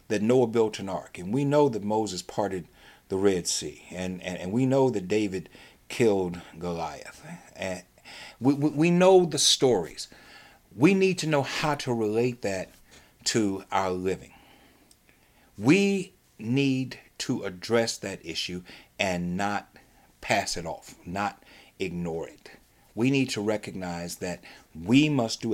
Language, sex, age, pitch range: English, male, 60-79, 90-135 Hz